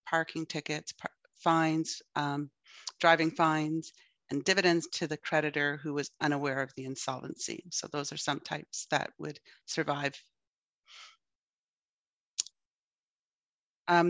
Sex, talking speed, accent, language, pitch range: female, 110 wpm, American, English, 145-175 Hz